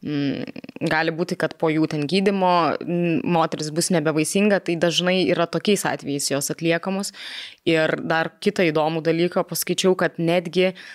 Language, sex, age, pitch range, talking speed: English, female, 20-39, 165-200 Hz, 135 wpm